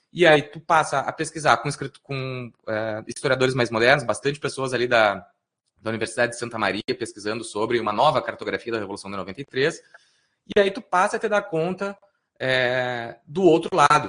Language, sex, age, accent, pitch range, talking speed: Portuguese, male, 20-39, Brazilian, 125-175 Hz, 185 wpm